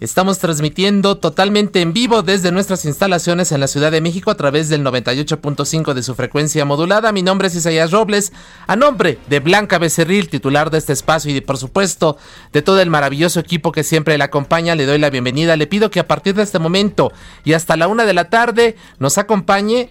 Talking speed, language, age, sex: 210 wpm, Spanish, 40-59, male